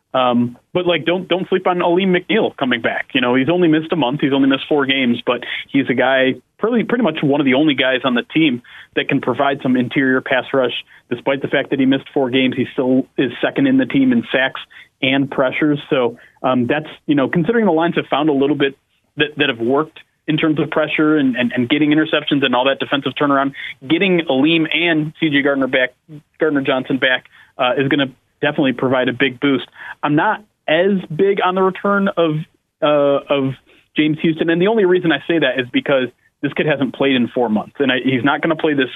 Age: 30-49